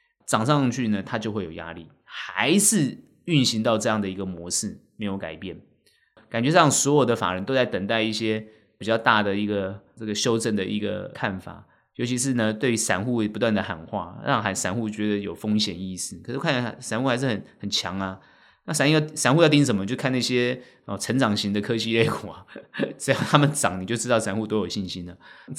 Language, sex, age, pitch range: Chinese, male, 20-39, 100-125 Hz